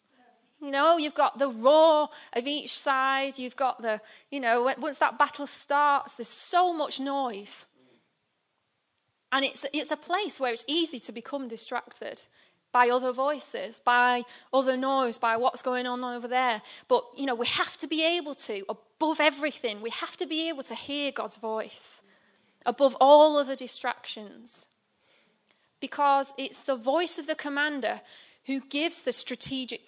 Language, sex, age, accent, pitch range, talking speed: English, female, 20-39, British, 245-295 Hz, 160 wpm